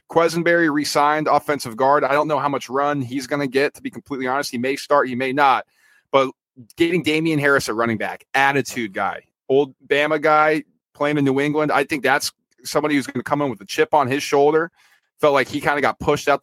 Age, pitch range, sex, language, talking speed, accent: 30-49, 125-150 Hz, male, English, 230 wpm, American